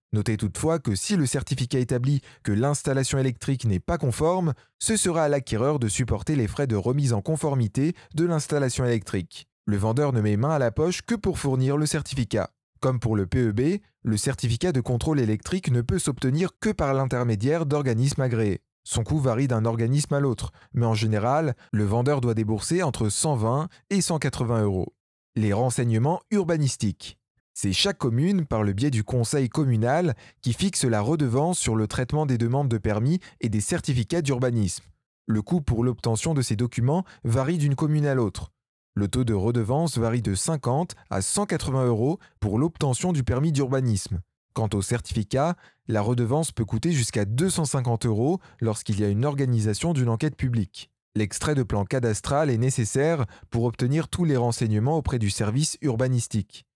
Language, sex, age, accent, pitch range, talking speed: French, male, 20-39, French, 115-150 Hz, 175 wpm